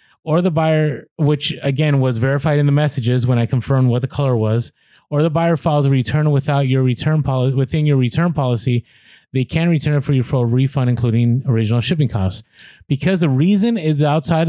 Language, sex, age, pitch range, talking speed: English, male, 30-49, 120-145 Hz, 205 wpm